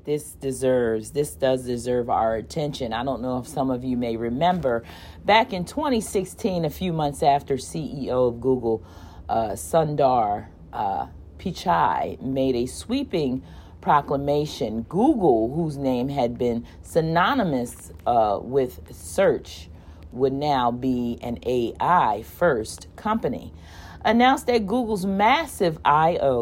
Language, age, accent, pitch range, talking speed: English, 40-59, American, 115-165 Hz, 125 wpm